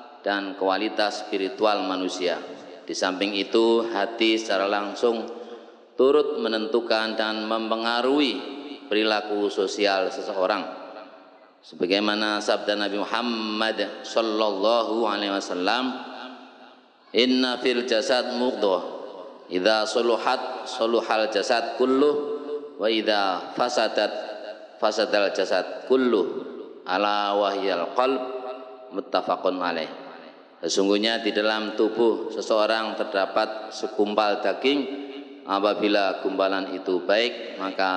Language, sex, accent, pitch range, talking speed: Indonesian, male, native, 100-120 Hz, 90 wpm